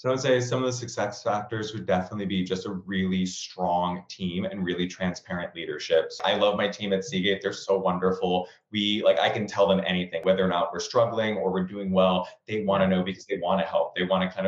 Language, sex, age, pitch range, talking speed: English, male, 20-39, 95-105 Hz, 245 wpm